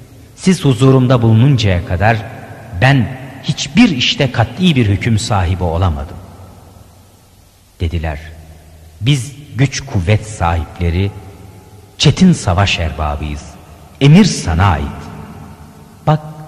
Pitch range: 90-125 Hz